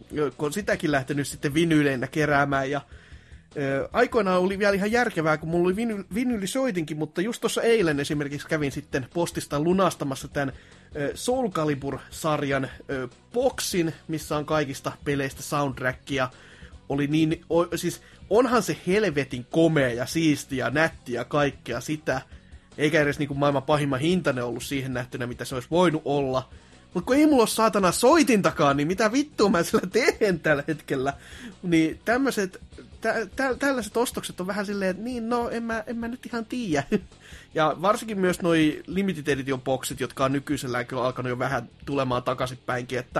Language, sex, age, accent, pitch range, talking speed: Finnish, male, 30-49, native, 130-180 Hz, 165 wpm